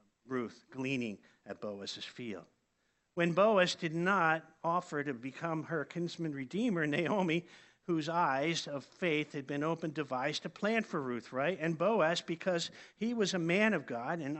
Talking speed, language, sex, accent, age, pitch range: 165 wpm, English, male, American, 50-69, 145-180 Hz